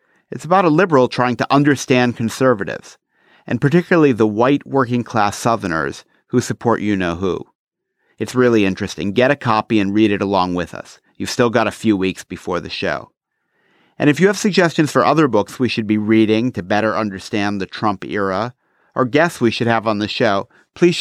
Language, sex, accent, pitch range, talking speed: English, male, American, 110-140 Hz, 185 wpm